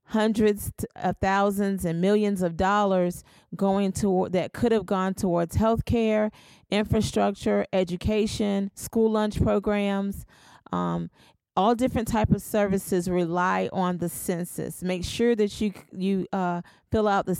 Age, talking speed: 30-49, 140 wpm